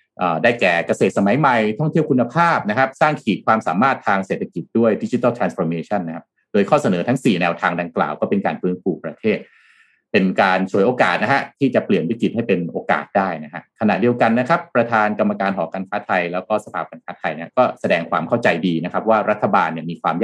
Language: Thai